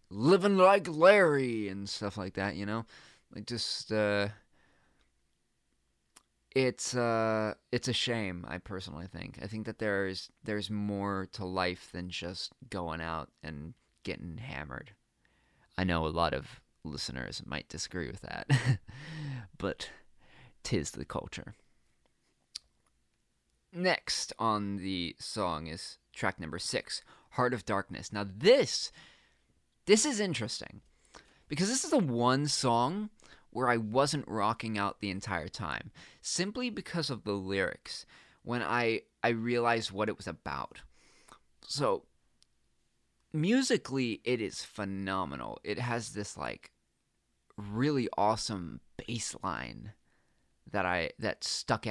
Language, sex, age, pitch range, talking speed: English, male, 20-39, 90-120 Hz, 125 wpm